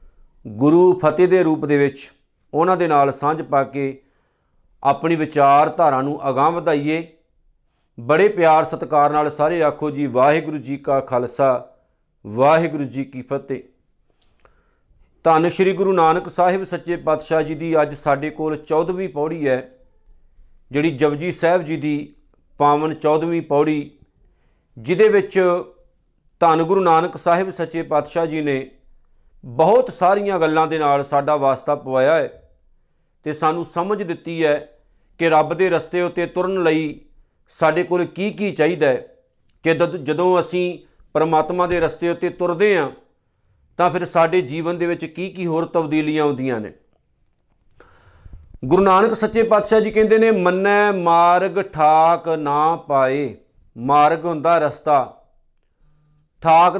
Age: 50-69